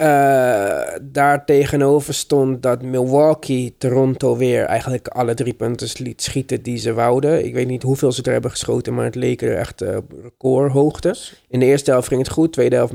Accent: Dutch